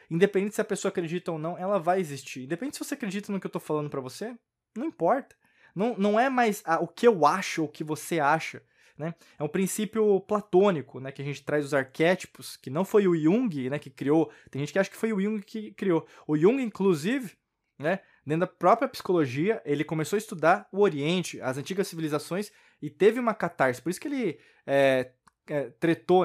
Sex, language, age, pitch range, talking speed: male, Portuguese, 20-39, 140-200 Hz, 210 wpm